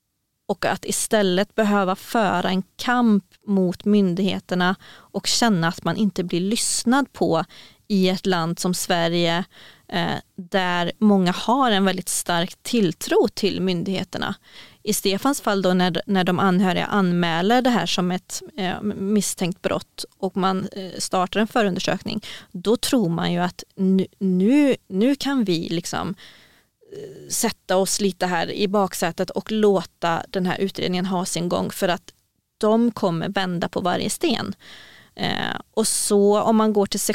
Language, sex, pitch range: Swedish, female, 185-215 Hz